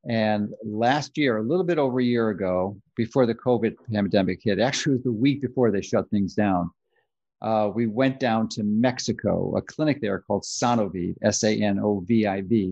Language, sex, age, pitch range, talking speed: English, male, 50-69, 105-125 Hz, 175 wpm